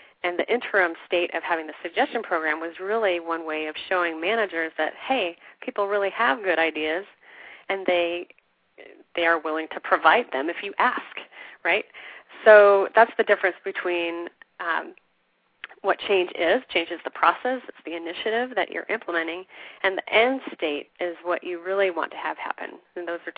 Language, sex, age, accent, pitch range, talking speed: English, female, 30-49, American, 170-215 Hz, 175 wpm